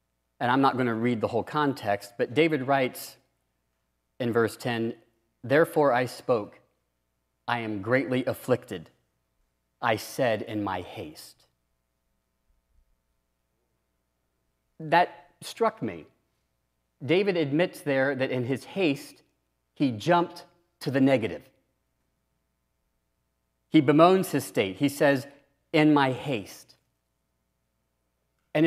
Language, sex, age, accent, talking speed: English, male, 40-59, American, 110 wpm